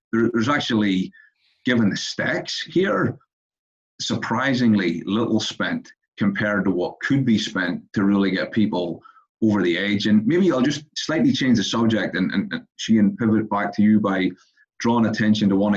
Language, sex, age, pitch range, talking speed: English, male, 30-49, 100-120 Hz, 170 wpm